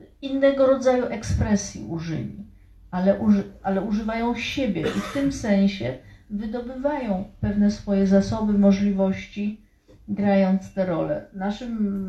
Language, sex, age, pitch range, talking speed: Polish, female, 40-59, 175-205 Hz, 110 wpm